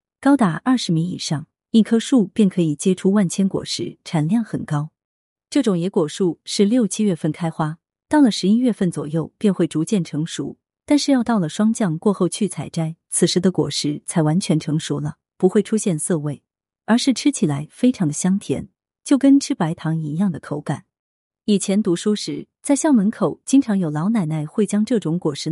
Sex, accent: female, native